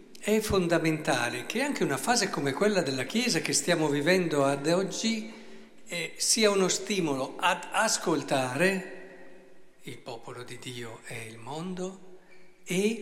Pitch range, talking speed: 140-200 Hz, 135 wpm